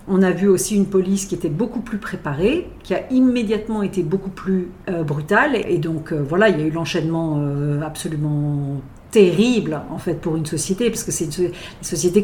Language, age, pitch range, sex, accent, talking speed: French, 50-69, 160-205 Hz, female, French, 205 wpm